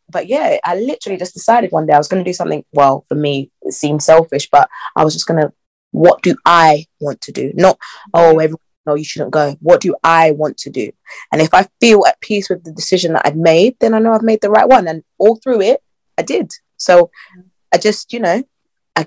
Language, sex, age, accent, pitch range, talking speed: English, female, 20-39, British, 160-215 Hz, 245 wpm